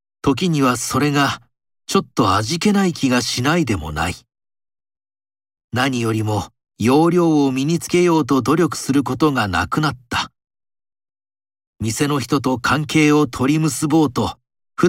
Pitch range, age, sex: 115-155 Hz, 40-59, male